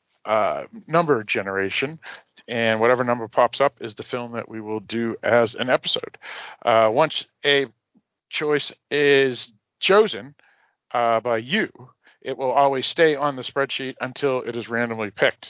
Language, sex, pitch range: English, male, 115-150 Hz